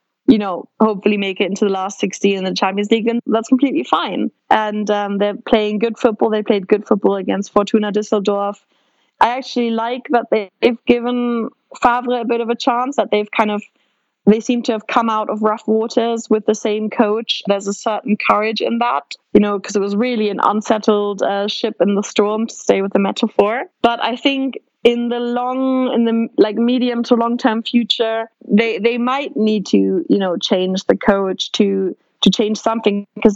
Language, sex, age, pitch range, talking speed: English, female, 20-39, 205-235 Hz, 200 wpm